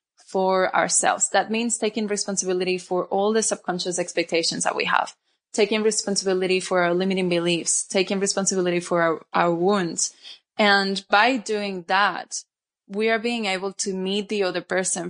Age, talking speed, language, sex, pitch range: 20-39, 155 wpm, English, female, 185-215 Hz